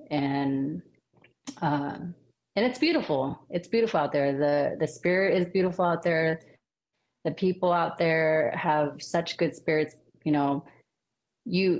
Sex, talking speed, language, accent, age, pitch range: female, 135 wpm, English, American, 30-49, 150-180 Hz